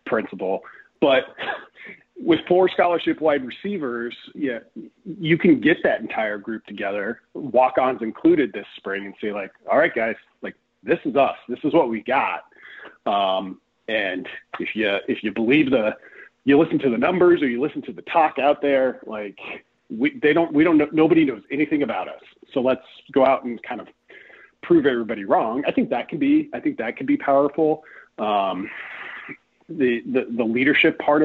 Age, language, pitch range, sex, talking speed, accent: 40-59, English, 110-160 Hz, male, 180 wpm, American